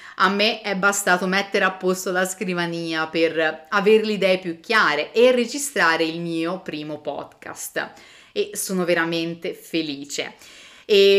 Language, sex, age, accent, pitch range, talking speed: Italian, female, 30-49, native, 160-215 Hz, 140 wpm